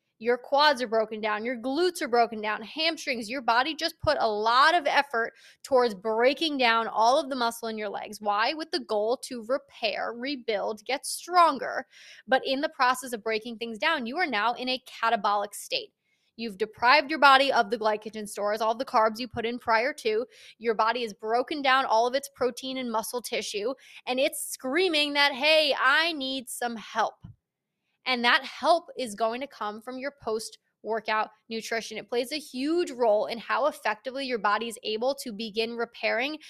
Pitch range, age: 225-275 Hz, 20-39